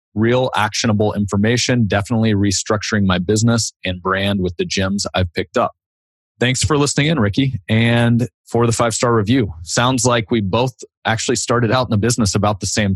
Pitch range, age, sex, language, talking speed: 95-115 Hz, 30-49, male, English, 175 wpm